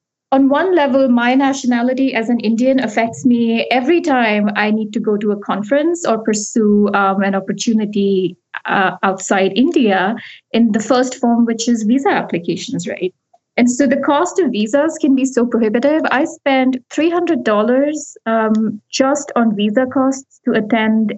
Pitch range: 210-265 Hz